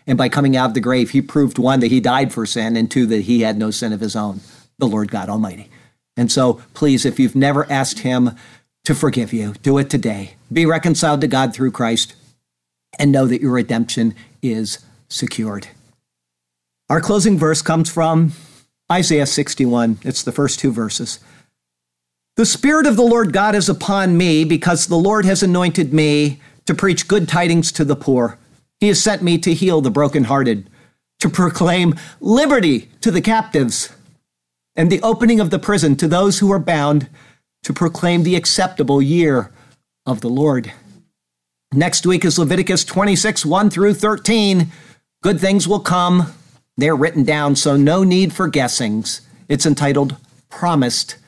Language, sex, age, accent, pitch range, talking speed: English, male, 50-69, American, 120-175 Hz, 170 wpm